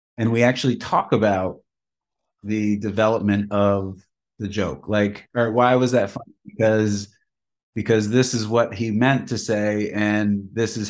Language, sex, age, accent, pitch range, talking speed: English, male, 30-49, American, 100-115 Hz, 155 wpm